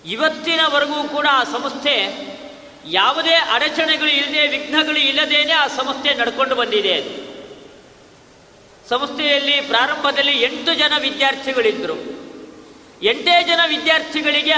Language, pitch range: Kannada, 255-310 Hz